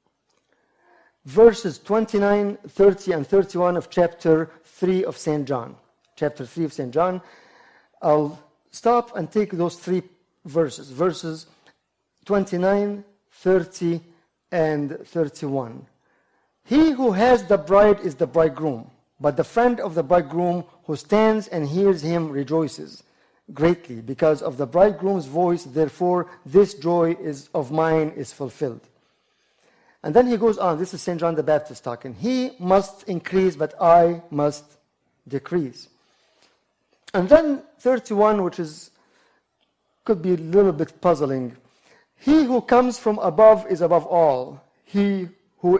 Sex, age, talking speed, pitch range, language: male, 50-69, 130 wpm, 155-200 Hz, English